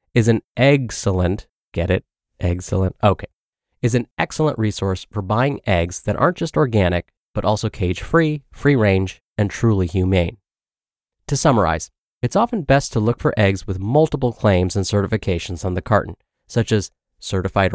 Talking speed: 150 wpm